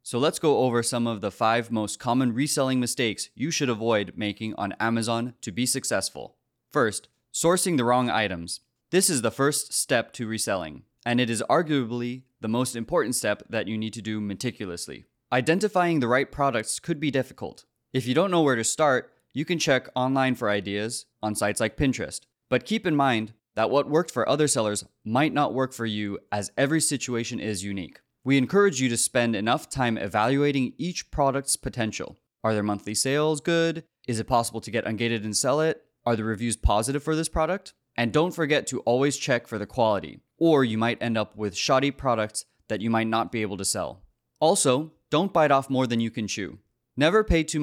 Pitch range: 110-140 Hz